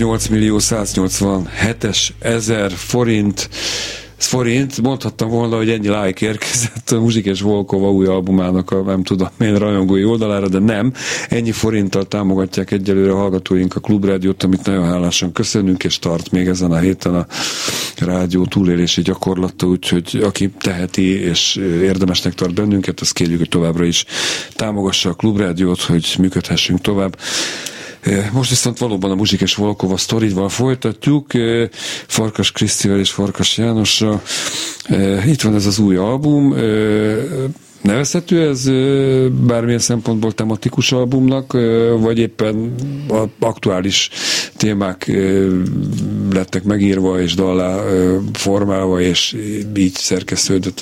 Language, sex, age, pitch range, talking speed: Hungarian, male, 40-59, 95-115 Hz, 120 wpm